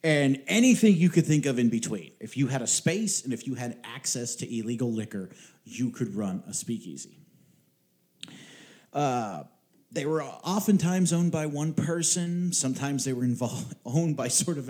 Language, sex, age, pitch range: English, male, 40-59, 115-150 Hz